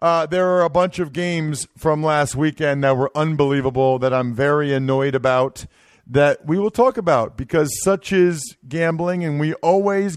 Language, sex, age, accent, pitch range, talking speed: English, male, 50-69, American, 135-175 Hz, 175 wpm